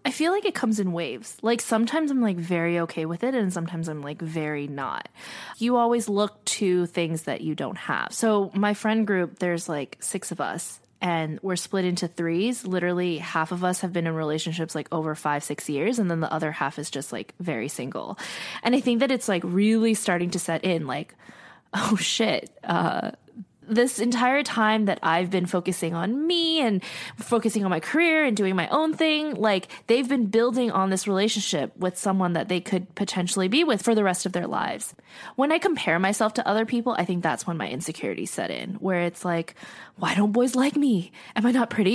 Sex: female